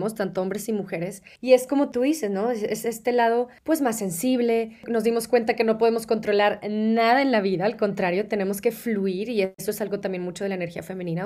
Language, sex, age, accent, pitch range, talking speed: Spanish, female, 20-39, Mexican, 200-245 Hz, 230 wpm